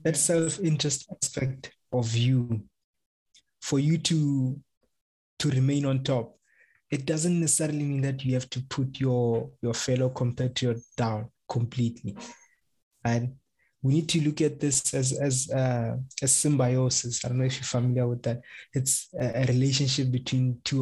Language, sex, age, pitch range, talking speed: English, male, 20-39, 120-135 Hz, 155 wpm